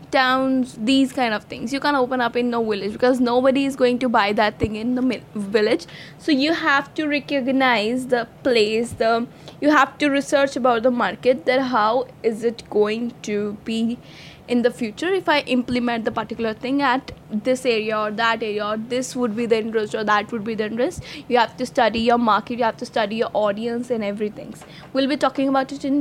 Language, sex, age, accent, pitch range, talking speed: Hindi, female, 10-29, native, 225-270 Hz, 215 wpm